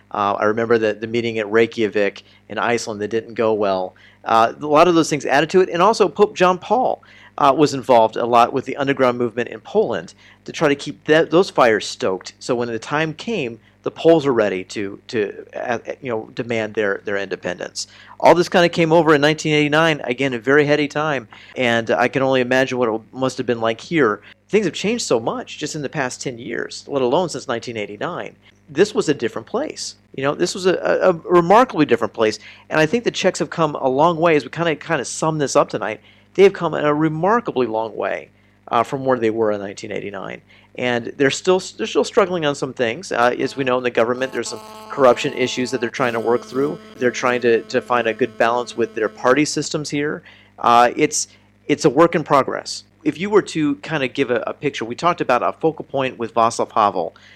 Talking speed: 230 wpm